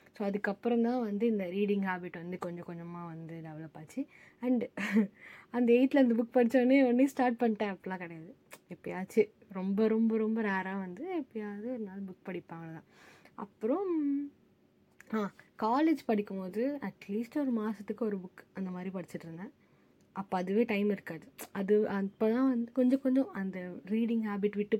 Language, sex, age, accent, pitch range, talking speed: Tamil, female, 20-39, native, 180-235 Hz, 150 wpm